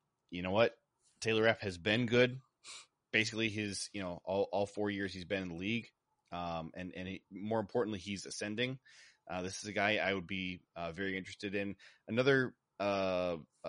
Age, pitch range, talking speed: 20-39, 95-110 Hz, 185 wpm